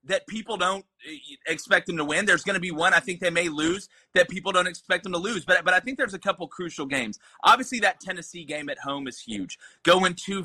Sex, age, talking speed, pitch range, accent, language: male, 30-49, 245 wpm, 160-200 Hz, American, English